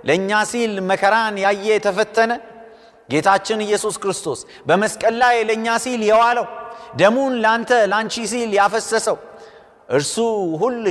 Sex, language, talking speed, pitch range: male, Amharic, 100 wpm, 155-235 Hz